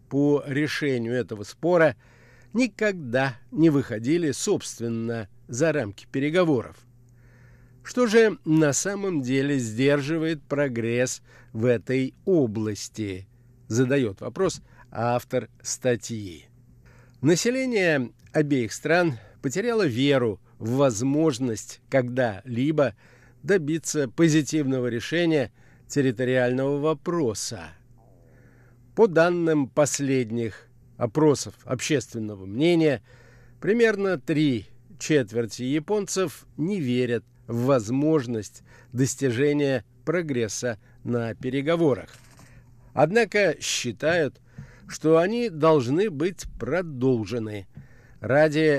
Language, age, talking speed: Russian, 50-69, 80 wpm